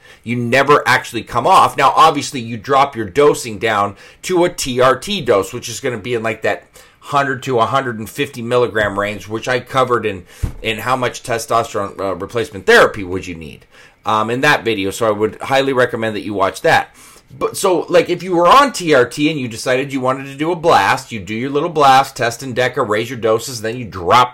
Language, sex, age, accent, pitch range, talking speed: English, male, 30-49, American, 115-145 Hz, 215 wpm